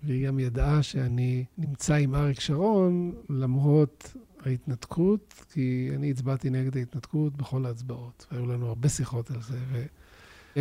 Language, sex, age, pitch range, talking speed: Hebrew, male, 50-69, 135-165 Hz, 135 wpm